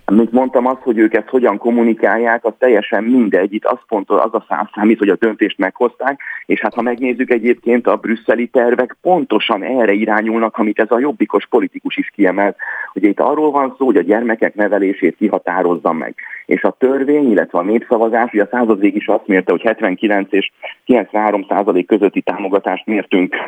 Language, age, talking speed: Hungarian, 30-49, 180 wpm